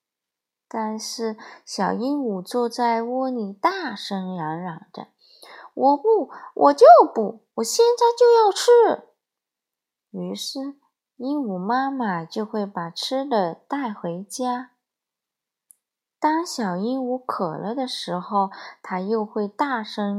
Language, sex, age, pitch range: Chinese, female, 20-39, 200-290 Hz